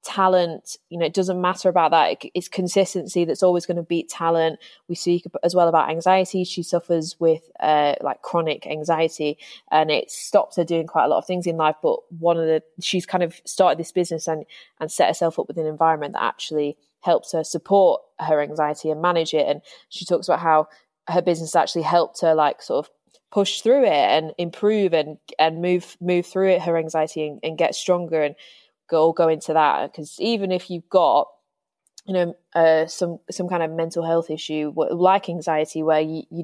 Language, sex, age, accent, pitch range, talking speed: English, female, 20-39, British, 155-180 Hz, 205 wpm